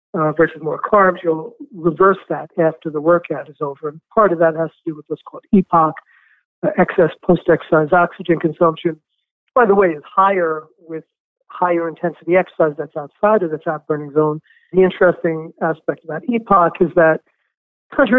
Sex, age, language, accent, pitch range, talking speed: male, 50-69, English, American, 155-185 Hz, 170 wpm